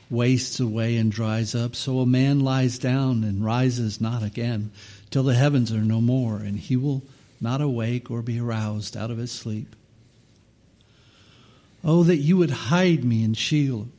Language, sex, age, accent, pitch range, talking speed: English, male, 60-79, American, 110-130 Hz, 170 wpm